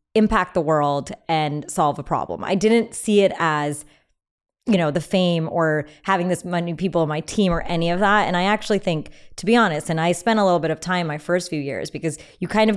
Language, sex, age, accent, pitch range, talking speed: English, female, 20-39, American, 165-215 Hz, 240 wpm